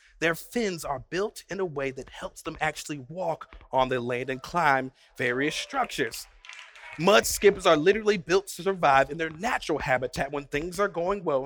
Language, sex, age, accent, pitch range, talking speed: English, male, 30-49, American, 170-230 Hz, 185 wpm